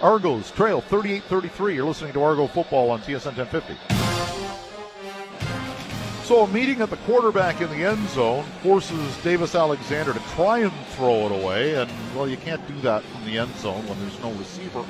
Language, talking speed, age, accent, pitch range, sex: English, 175 wpm, 50-69, American, 120-185 Hz, male